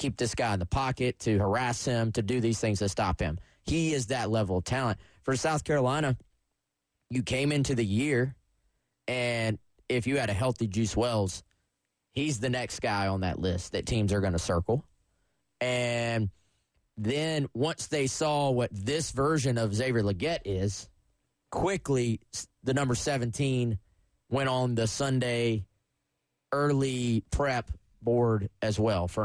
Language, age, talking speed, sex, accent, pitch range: English, 30-49, 160 wpm, male, American, 100-130 Hz